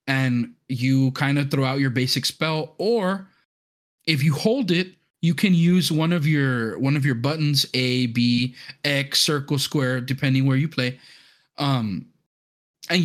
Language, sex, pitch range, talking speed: English, male, 130-160 Hz, 160 wpm